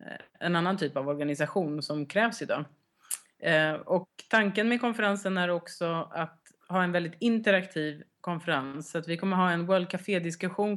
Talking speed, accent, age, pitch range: 155 wpm, native, 30-49, 155-200 Hz